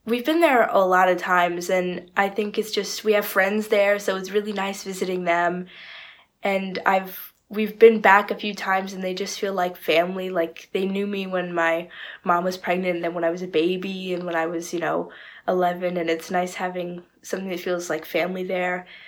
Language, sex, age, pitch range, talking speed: English, female, 20-39, 175-200 Hz, 215 wpm